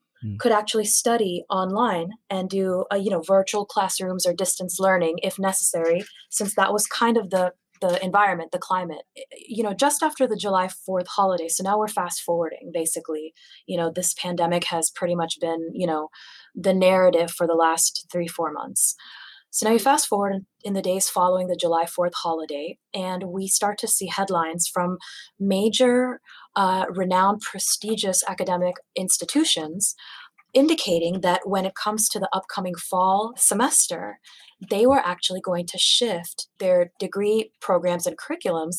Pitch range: 180-215 Hz